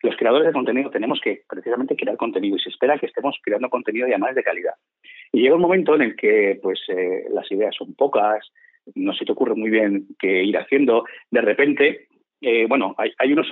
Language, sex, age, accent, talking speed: Spanish, male, 30-49, Spanish, 215 wpm